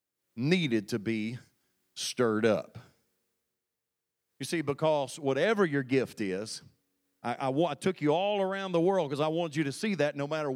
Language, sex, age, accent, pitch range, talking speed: English, male, 40-59, American, 145-245 Hz, 170 wpm